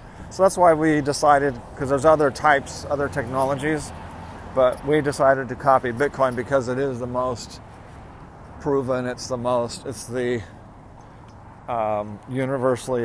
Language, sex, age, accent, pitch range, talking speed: English, male, 40-59, American, 105-135 Hz, 140 wpm